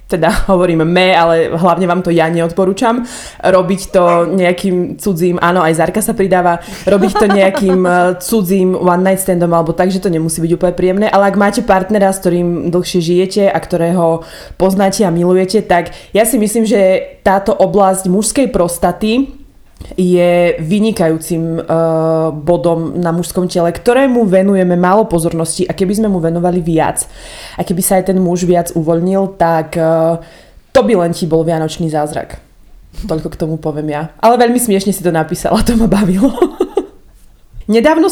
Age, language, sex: 20-39, Slovak, female